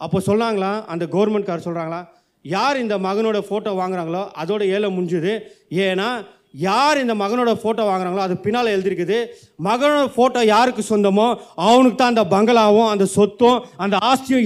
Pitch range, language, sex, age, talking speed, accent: 200-245 Hz, Tamil, male, 30-49, 145 wpm, native